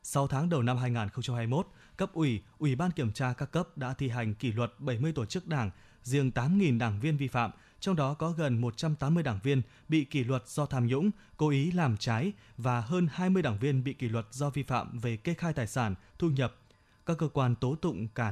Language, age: Vietnamese, 20-39